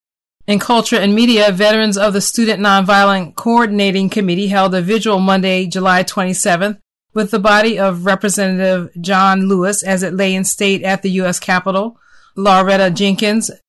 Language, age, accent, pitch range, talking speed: English, 30-49, American, 190-215 Hz, 155 wpm